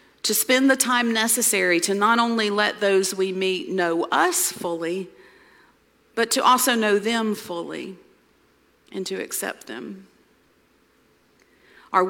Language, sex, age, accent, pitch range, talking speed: English, female, 40-59, American, 170-210 Hz, 130 wpm